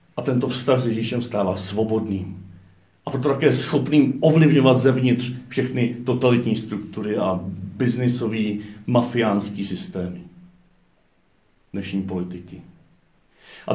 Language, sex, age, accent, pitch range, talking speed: Czech, male, 50-69, native, 105-140 Hz, 100 wpm